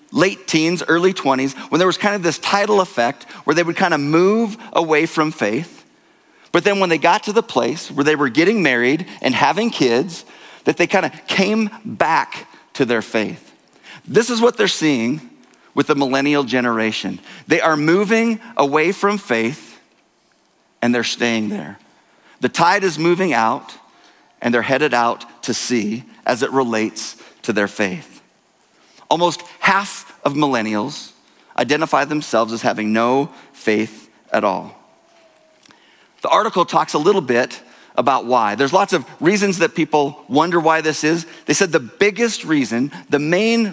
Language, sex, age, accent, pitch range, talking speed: English, male, 40-59, American, 135-200 Hz, 165 wpm